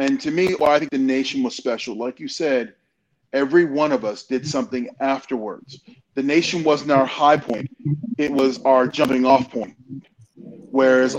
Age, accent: 30-49, American